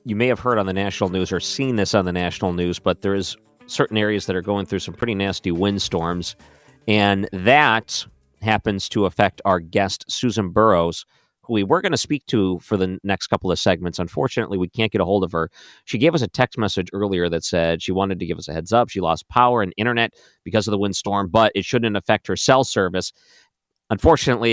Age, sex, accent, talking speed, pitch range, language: 40-59, male, American, 225 wpm, 85-105 Hz, English